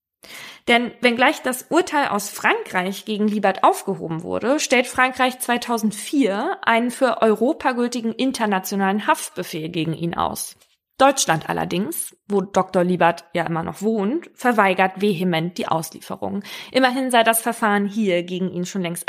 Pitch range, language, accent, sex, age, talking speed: 185-225 Hz, German, German, female, 20-39, 140 wpm